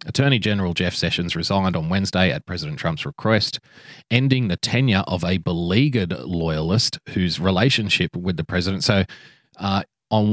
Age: 30-49